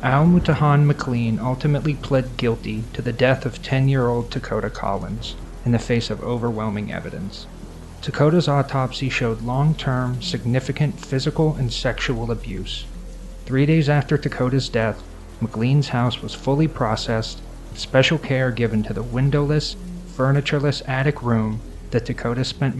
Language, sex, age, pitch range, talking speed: English, male, 30-49, 115-140 Hz, 140 wpm